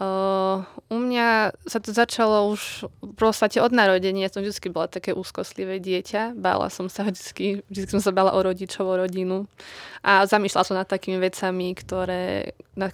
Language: Slovak